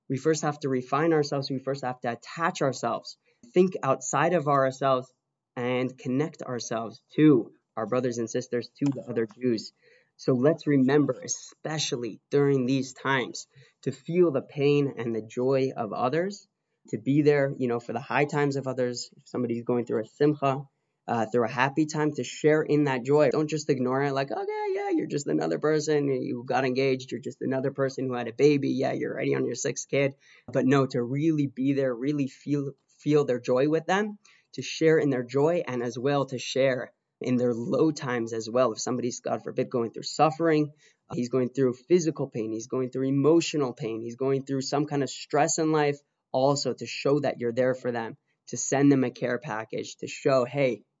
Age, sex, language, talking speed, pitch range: 20-39, male, English, 205 wpm, 125-150 Hz